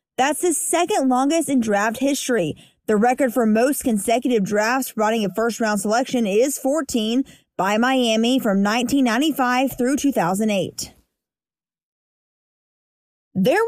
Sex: female